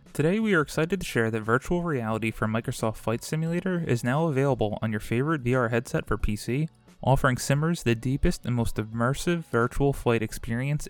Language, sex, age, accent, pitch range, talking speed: English, male, 20-39, American, 110-145 Hz, 180 wpm